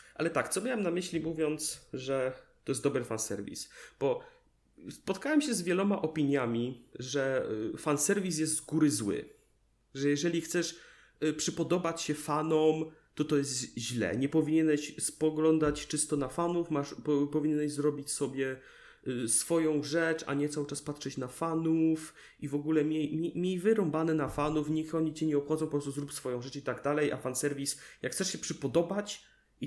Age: 30-49